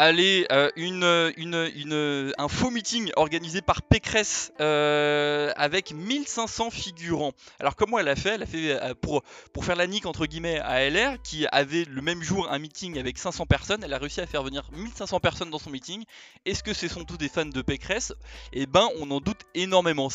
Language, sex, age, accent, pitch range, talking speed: French, male, 20-39, French, 135-170 Hz, 205 wpm